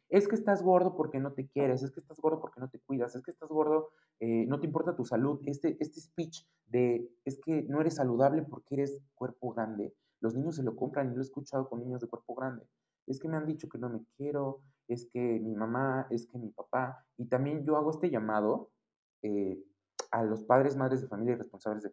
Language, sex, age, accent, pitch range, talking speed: Spanish, male, 30-49, Mexican, 115-150 Hz, 235 wpm